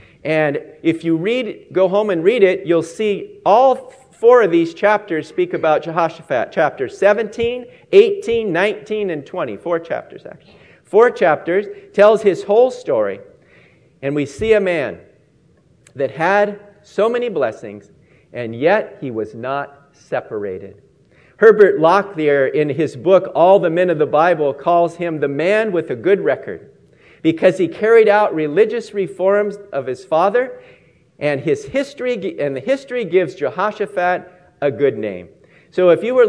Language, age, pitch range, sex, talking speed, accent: English, 50-69, 165-245 Hz, male, 155 wpm, American